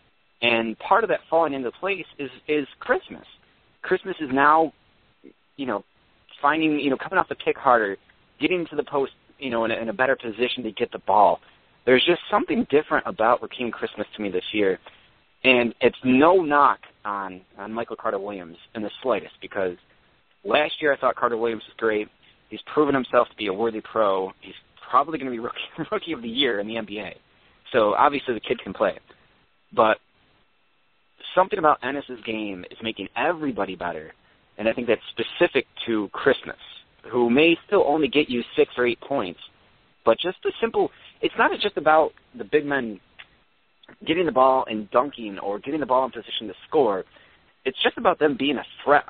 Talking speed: 190 wpm